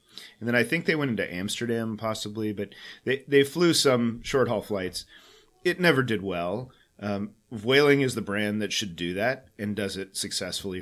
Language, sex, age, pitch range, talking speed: German, male, 30-49, 105-130 Hz, 185 wpm